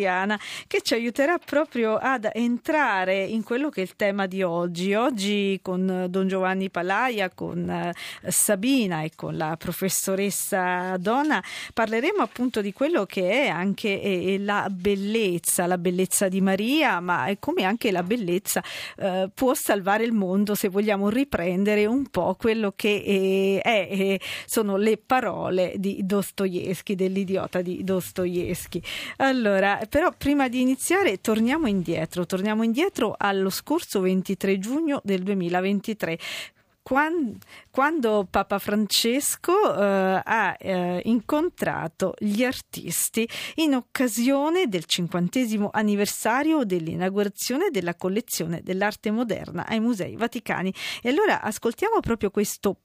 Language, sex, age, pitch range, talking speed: Italian, female, 40-59, 185-240 Hz, 120 wpm